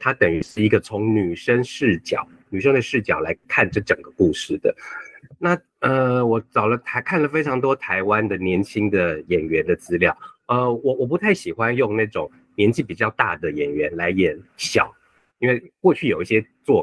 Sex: male